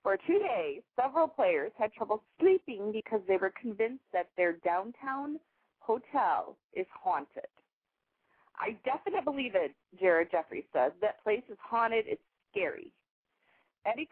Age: 30-49